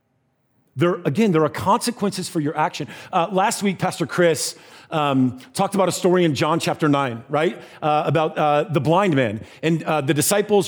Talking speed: 185 wpm